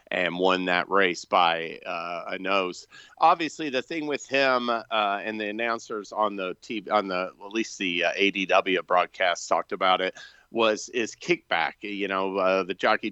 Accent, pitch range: American, 95-115 Hz